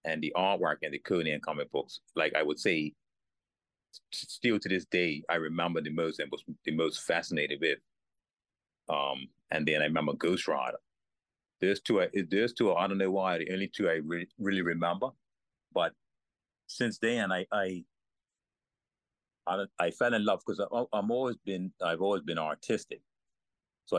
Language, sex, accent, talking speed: English, male, American, 170 wpm